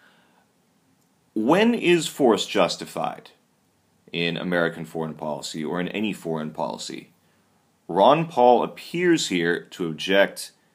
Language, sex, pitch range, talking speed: Spanish, male, 85-100 Hz, 105 wpm